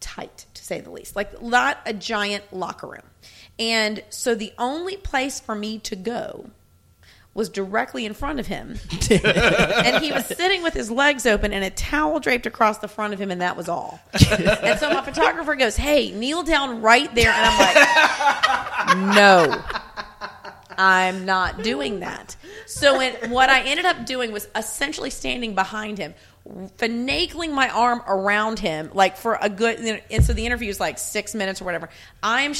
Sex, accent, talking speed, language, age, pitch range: female, American, 175 wpm, English, 30-49, 205-265 Hz